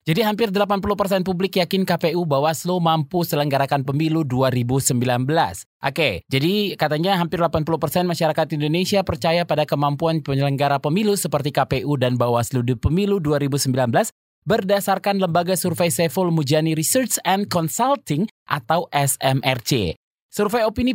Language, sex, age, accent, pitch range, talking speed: Indonesian, male, 20-39, native, 140-190 Hz, 120 wpm